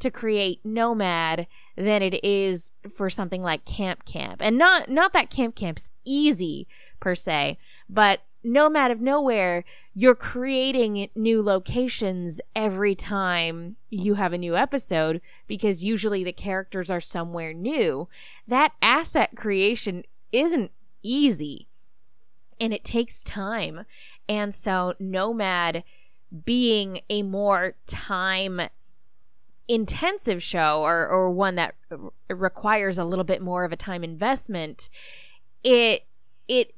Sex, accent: female, American